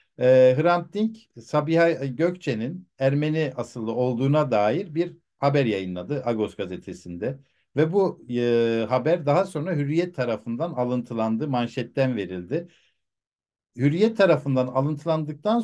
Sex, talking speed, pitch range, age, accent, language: male, 105 wpm, 125-170 Hz, 60-79, native, Turkish